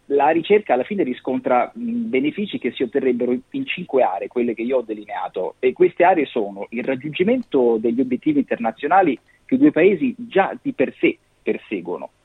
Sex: male